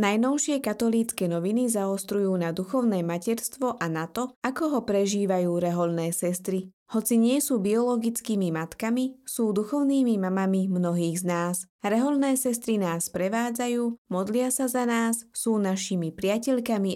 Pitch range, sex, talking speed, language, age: 180-240 Hz, female, 130 wpm, Slovak, 20-39